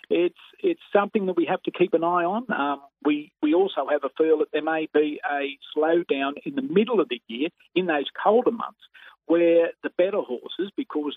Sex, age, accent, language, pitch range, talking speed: male, 50-69, Australian, English, 145-205 Hz, 210 wpm